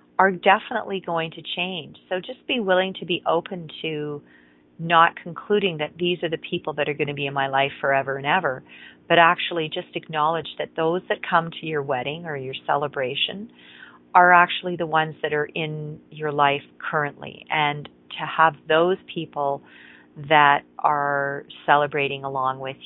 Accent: American